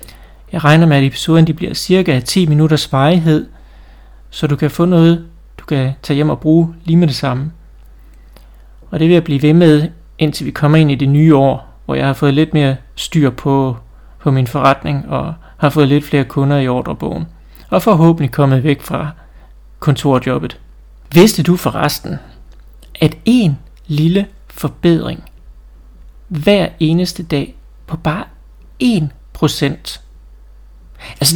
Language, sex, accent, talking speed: Danish, male, native, 155 wpm